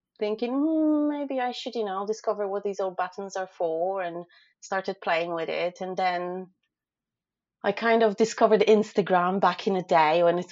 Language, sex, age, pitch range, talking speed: English, female, 30-49, 155-205 Hz, 185 wpm